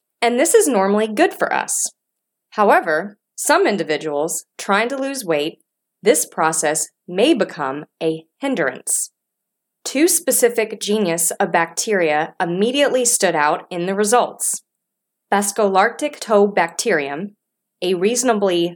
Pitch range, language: 165-225 Hz, English